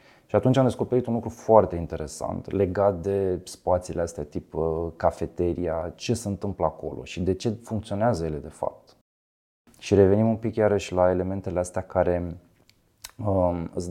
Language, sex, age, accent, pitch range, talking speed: Romanian, male, 20-39, native, 85-110 Hz, 150 wpm